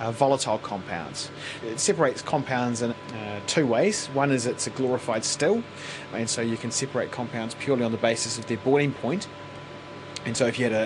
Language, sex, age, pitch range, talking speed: English, male, 30-49, 120-145 Hz, 200 wpm